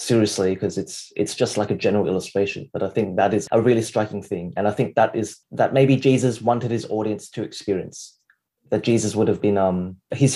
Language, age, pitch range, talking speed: English, 20-39, 100-125 Hz, 220 wpm